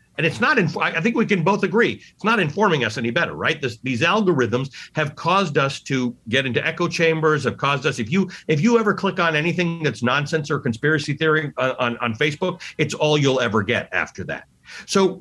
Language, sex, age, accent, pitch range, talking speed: English, male, 50-69, American, 135-180 Hz, 215 wpm